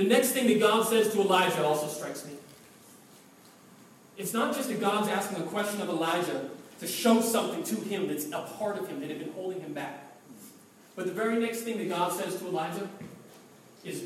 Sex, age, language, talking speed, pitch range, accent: male, 40-59, English, 205 wpm, 190-240 Hz, American